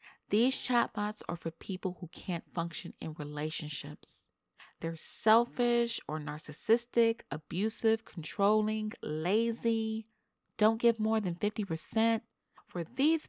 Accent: American